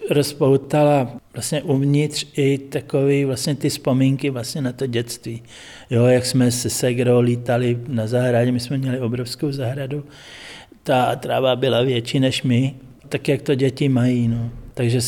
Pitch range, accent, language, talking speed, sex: 125-140 Hz, native, Czech, 150 wpm, male